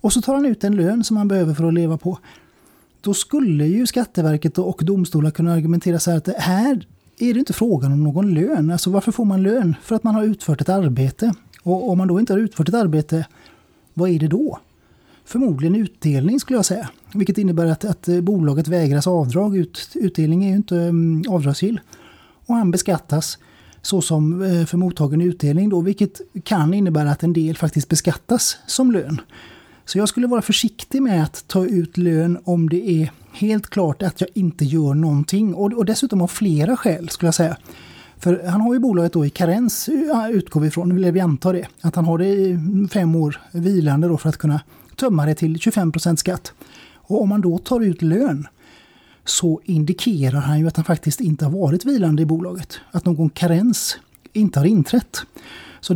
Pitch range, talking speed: 160-200 Hz, 195 wpm